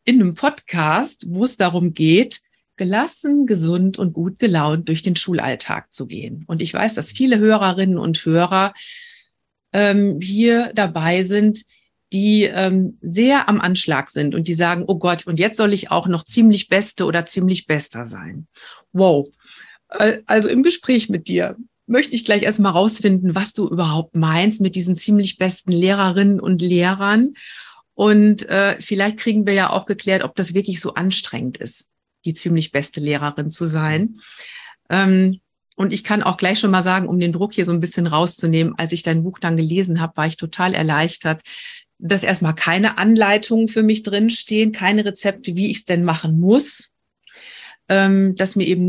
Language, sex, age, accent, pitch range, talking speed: German, female, 40-59, German, 170-210 Hz, 175 wpm